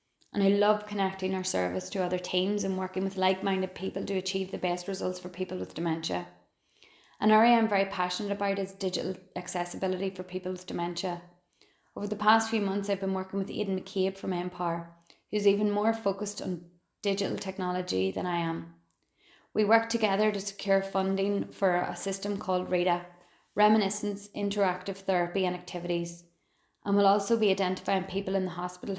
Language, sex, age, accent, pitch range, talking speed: English, female, 20-39, Irish, 180-200 Hz, 175 wpm